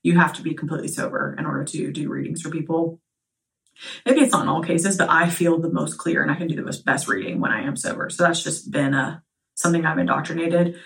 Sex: female